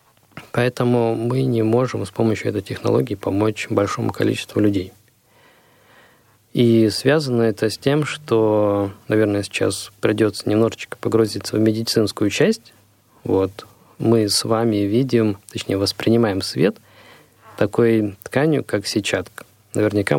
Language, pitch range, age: Russian, 105-120 Hz, 20-39